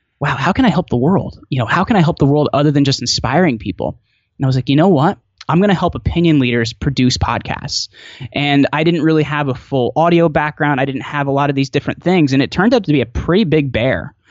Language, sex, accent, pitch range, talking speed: English, male, American, 130-160 Hz, 265 wpm